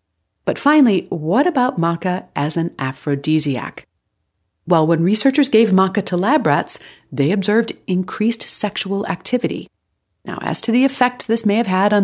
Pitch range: 150-230 Hz